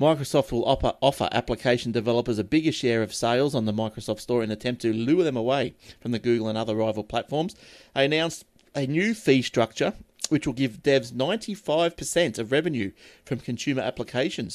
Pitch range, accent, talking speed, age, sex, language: 110-135 Hz, Australian, 180 wpm, 30-49, male, English